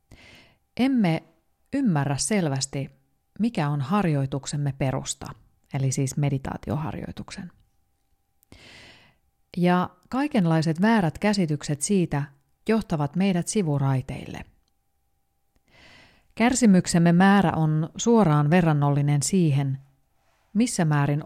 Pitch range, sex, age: 140-185 Hz, female, 30-49